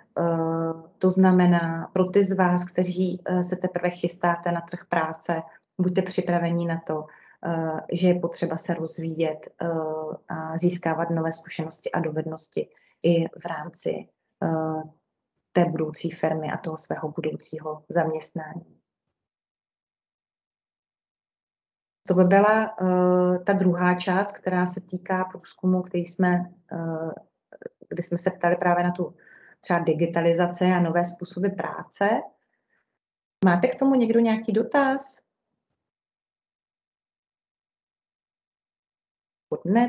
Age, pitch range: 30-49, 170-190 Hz